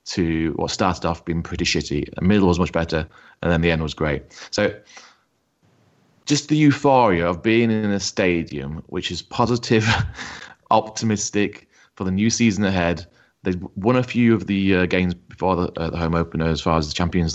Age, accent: 30-49, British